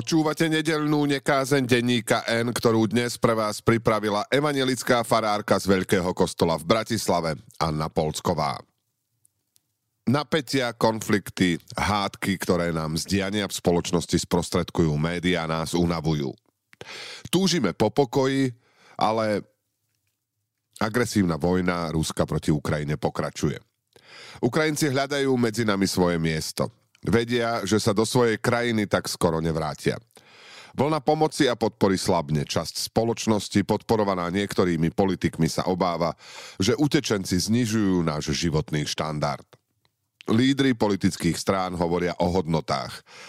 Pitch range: 85-120 Hz